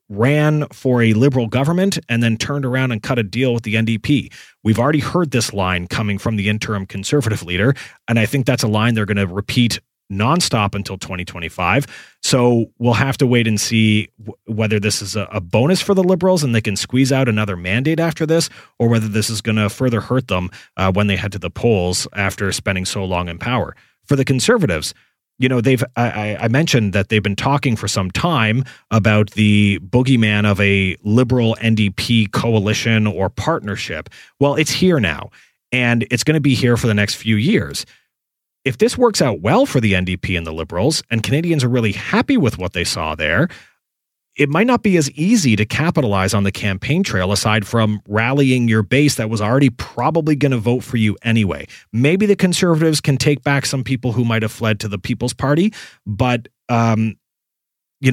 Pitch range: 100-135 Hz